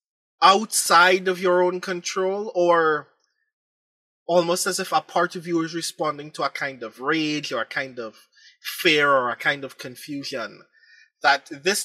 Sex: male